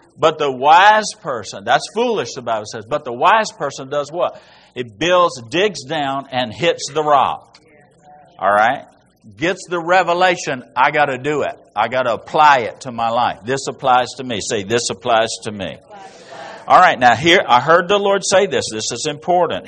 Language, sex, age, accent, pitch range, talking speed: English, male, 50-69, American, 110-160 Hz, 185 wpm